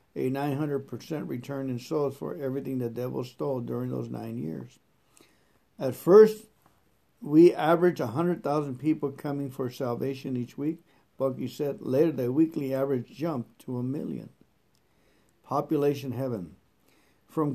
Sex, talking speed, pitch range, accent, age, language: male, 130 wpm, 130-155 Hz, American, 60-79, English